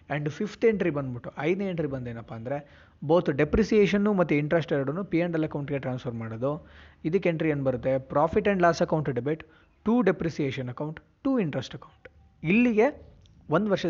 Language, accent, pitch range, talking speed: Kannada, native, 140-170 Hz, 180 wpm